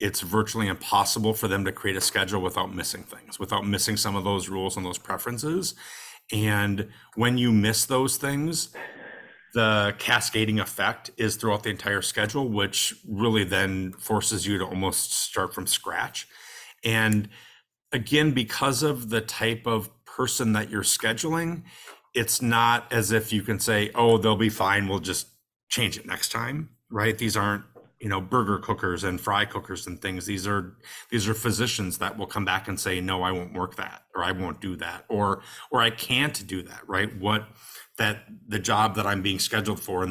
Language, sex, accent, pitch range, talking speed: English, male, American, 95-115 Hz, 185 wpm